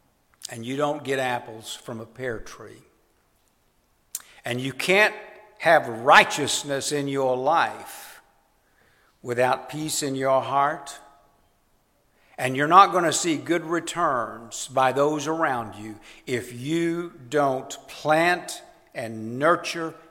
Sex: male